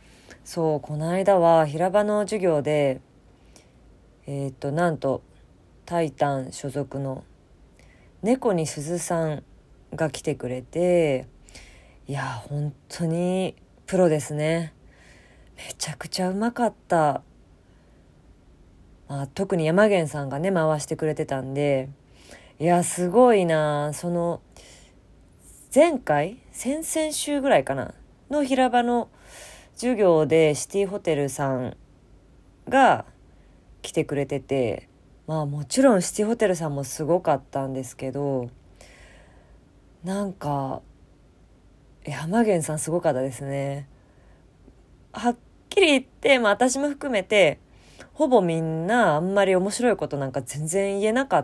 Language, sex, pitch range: Japanese, female, 130-185 Hz